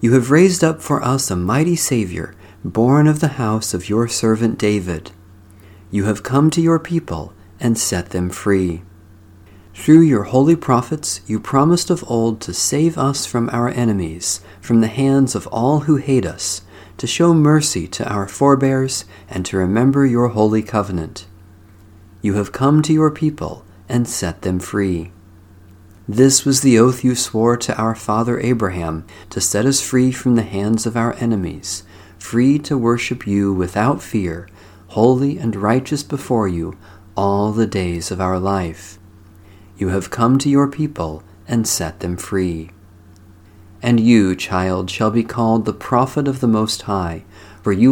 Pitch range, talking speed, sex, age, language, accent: 95-125 Hz, 165 wpm, male, 40-59, English, American